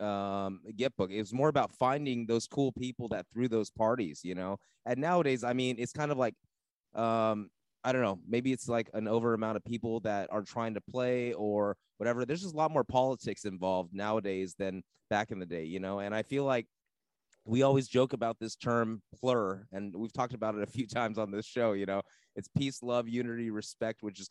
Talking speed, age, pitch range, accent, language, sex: 220 wpm, 20-39, 110-135 Hz, American, English, male